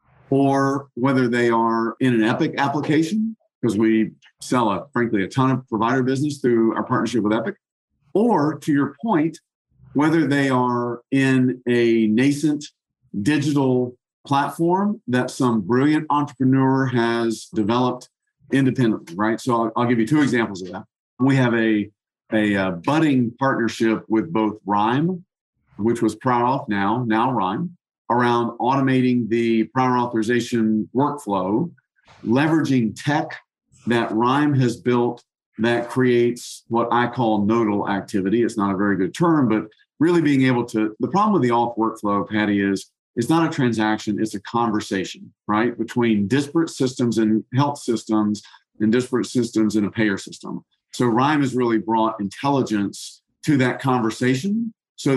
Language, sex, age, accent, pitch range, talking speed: English, male, 50-69, American, 110-135 Hz, 150 wpm